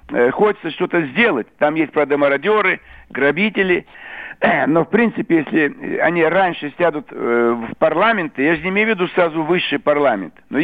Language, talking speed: Russian, 150 wpm